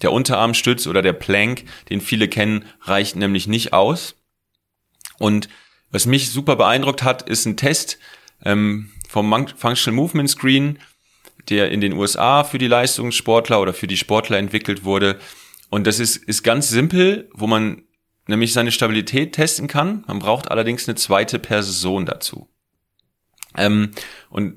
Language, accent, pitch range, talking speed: German, German, 105-130 Hz, 150 wpm